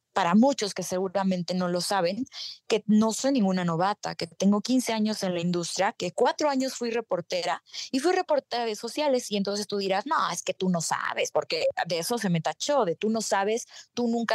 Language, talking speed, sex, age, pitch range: Spanish, 215 wpm, female, 20-39, 185-230 Hz